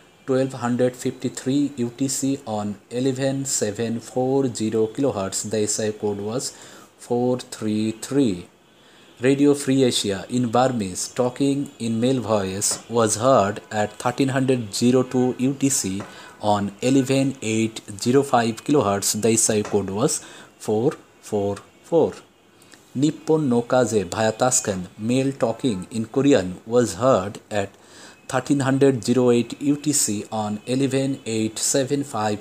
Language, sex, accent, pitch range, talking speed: English, male, Indian, 105-135 Hz, 80 wpm